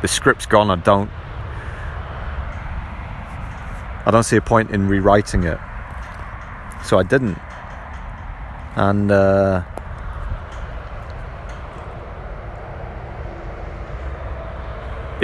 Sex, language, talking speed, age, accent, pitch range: male, English, 70 wpm, 30-49, British, 80-105 Hz